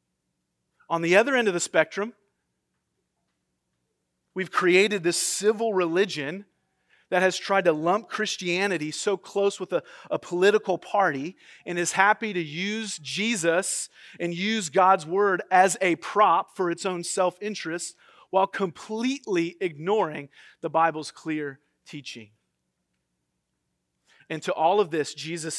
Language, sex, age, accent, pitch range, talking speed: English, male, 40-59, American, 155-205 Hz, 130 wpm